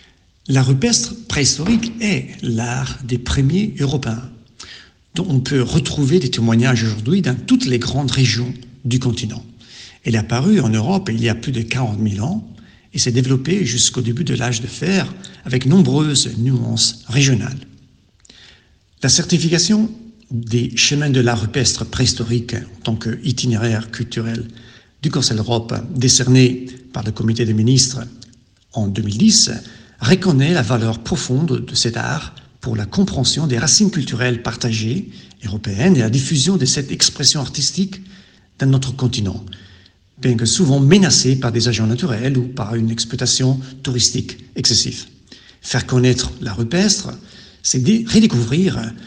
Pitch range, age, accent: 115-140 Hz, 60-79, French